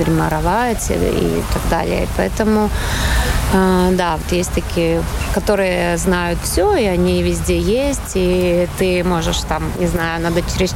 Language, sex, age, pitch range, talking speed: Russian, female, 20-39, 160-195 Hz, 135 wpm